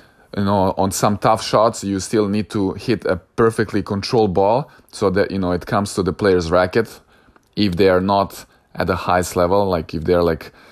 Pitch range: 95-110 Hz